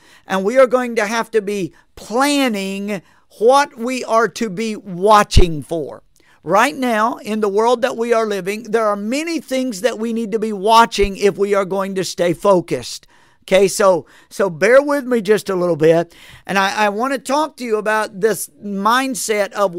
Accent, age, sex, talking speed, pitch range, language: American, 50-69, male, 195 wpm, 190-240 Hz, English